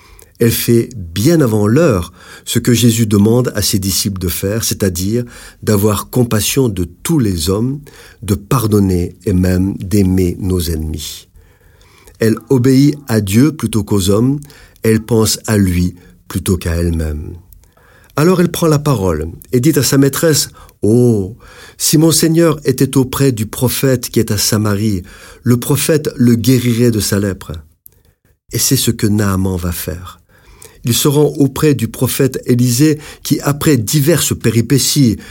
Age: 50-69